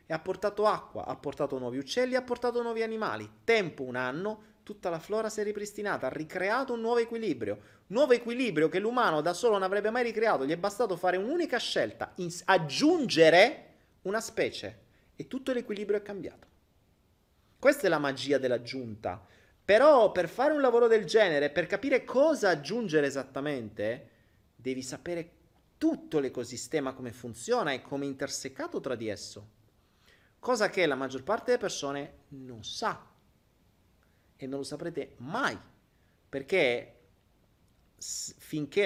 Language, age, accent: Italian, 30-49, native